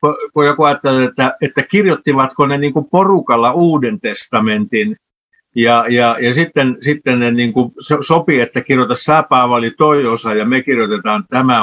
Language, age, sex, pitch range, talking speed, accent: Finnish, 60-79, male, 125-155 Hz, 145 wpm, native